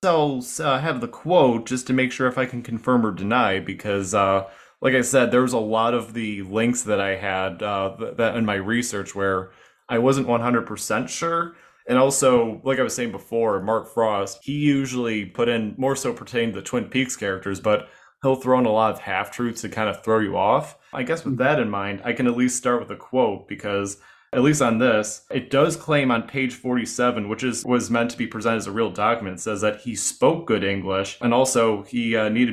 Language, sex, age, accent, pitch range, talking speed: English, male, 20-39, American, 105-125 Hz, 225 wpm